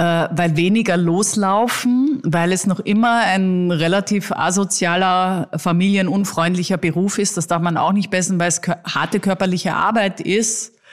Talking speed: 145 wpm